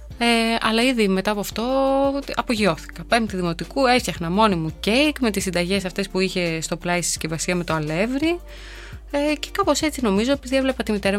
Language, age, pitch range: Greek, 20-39, 170-230 Hz